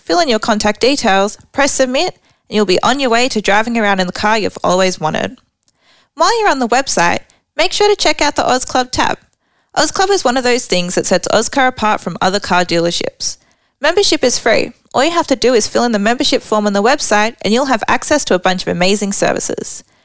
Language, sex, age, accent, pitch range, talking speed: English, female, 20-39, Australian, 205-285 Hz, 235 wpm